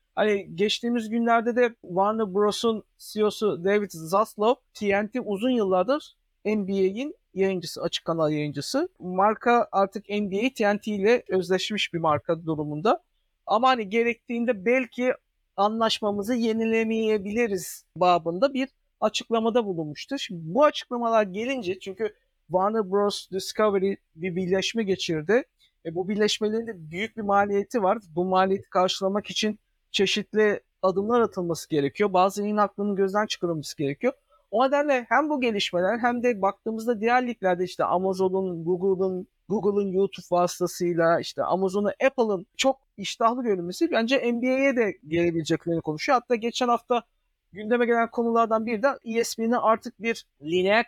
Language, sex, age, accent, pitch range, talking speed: Turkish, male, 50-69, native, 185-235 Hz, 125 wpm